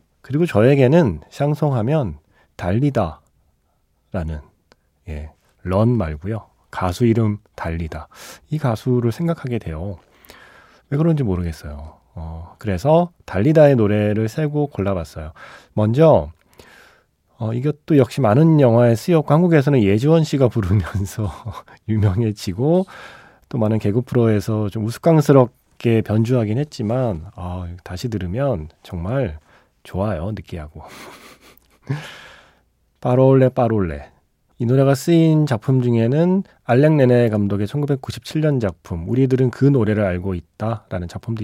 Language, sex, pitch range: Korean, male, 95-140 Hz